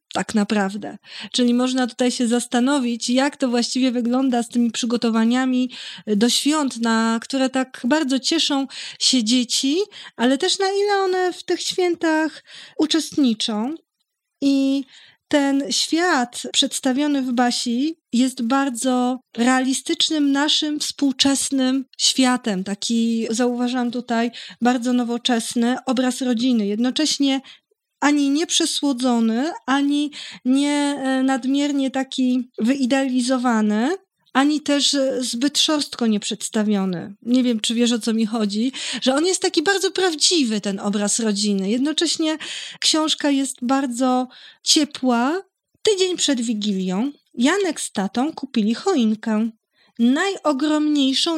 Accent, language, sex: native, Polish, female